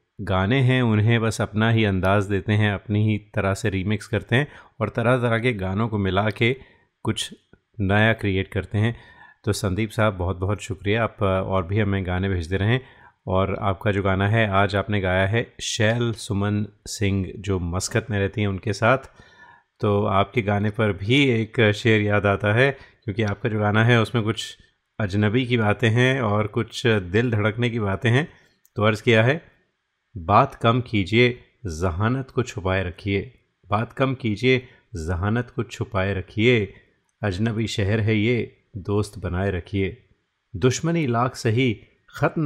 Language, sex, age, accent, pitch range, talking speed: Hindi, male, 30-49, native, 100-120 Hz, 165 wpm